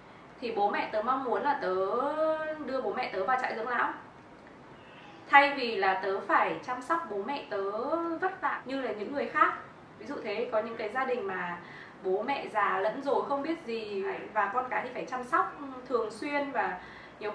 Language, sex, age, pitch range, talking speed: Vietnamese, female, 20-39, 210-295 Hz, 210 wpm